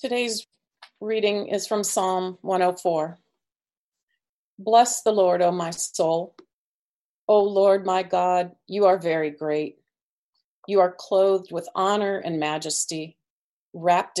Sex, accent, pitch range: female, American, 165-195 Hz